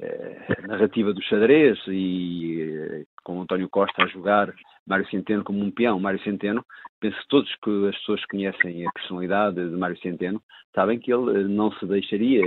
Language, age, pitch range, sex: Portuguese, 50-69, 90-115 Hz, male